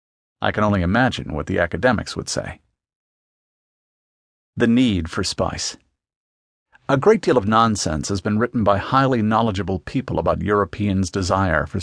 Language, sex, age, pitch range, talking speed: English, male, 50-69, 95-120 Hz, 145 wpm